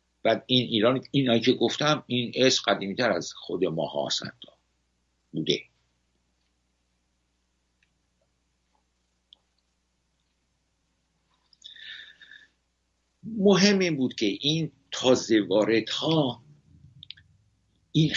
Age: 60-79